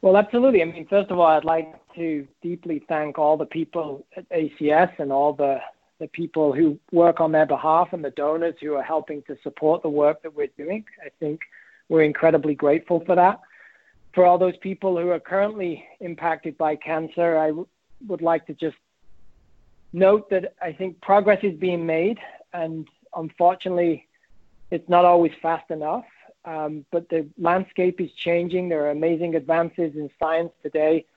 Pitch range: 155-180 Hz